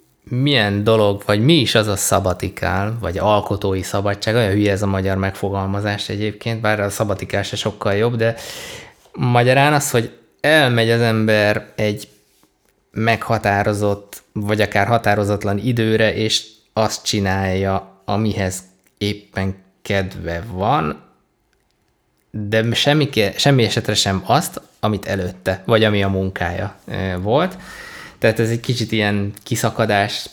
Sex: male